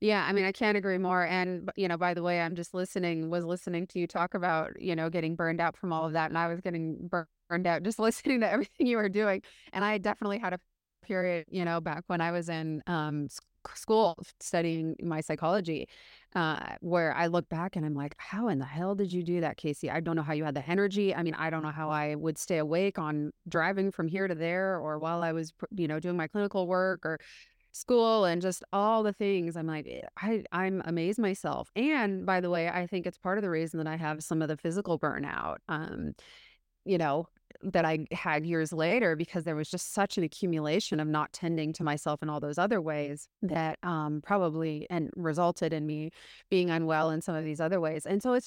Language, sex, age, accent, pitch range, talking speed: English, female, 20-39, American, 160-190 Hz, 235 wpm